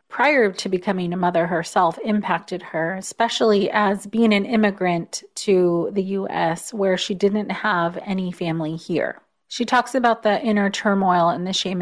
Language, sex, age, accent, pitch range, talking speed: English, female, 30-49, American, 180-215 Hz, 160 wpm